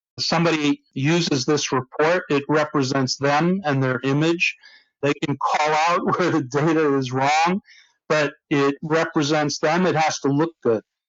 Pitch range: 135-165 Hz